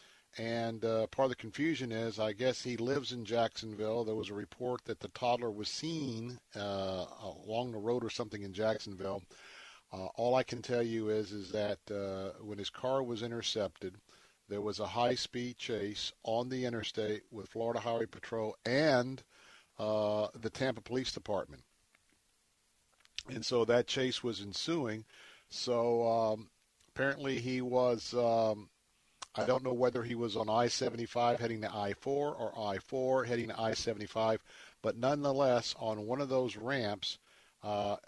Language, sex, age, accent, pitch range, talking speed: English, male, 50-69, American, 105-125 Hz, 155 wpm